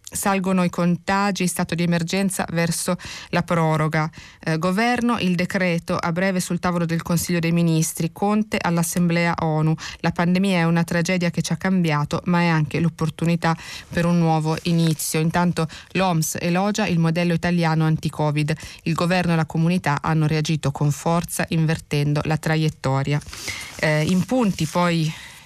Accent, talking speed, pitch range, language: native, 150 wpm, 160-180 Hz, Italian